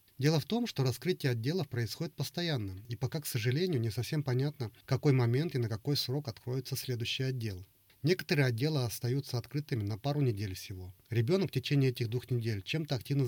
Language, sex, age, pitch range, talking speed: Russian, male, 30-49, 115-145 Hz, 185 wpm